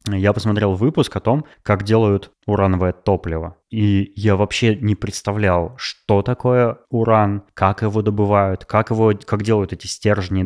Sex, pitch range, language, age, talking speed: male, 95-115 Hz, Russian, 20-39, 150 wpm